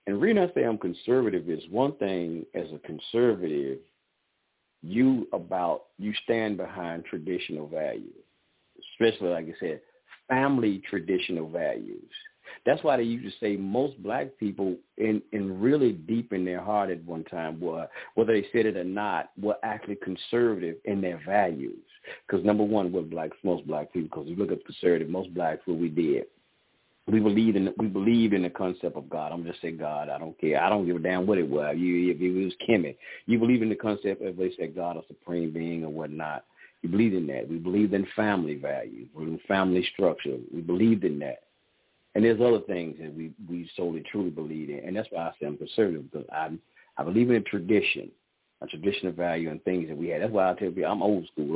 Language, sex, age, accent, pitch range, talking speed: English, male, 50-69, American, 85-110 Hz, 210 wpm